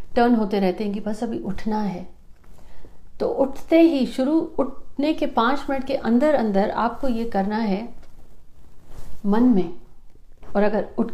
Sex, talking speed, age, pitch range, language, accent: female, 155 wpm, 50-69, 200-255 Hz, Hindi, native